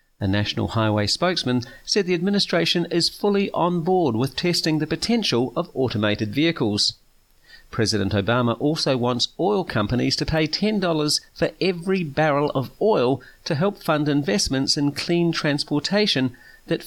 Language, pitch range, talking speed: English, 115-165 Hz, 140 wpm